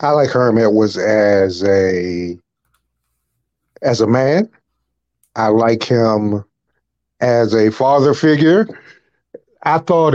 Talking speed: 105 wpm